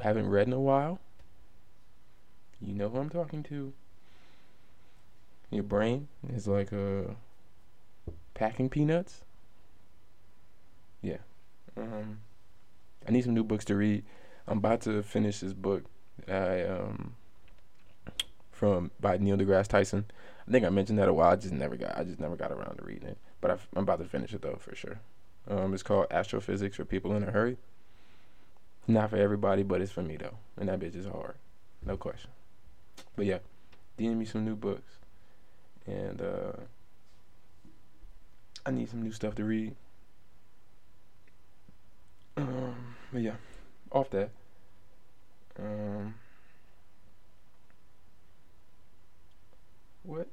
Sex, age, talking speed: male, 20-39, 140 wpm